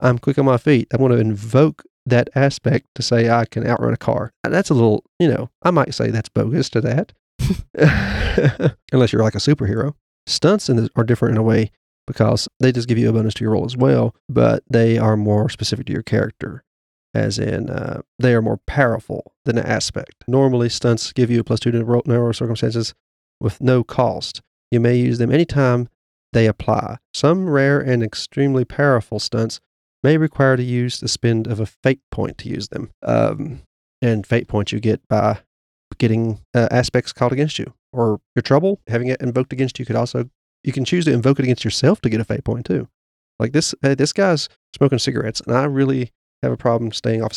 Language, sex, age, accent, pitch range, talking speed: English, male, 40-59, American, 110-135 Hz, 205 wpm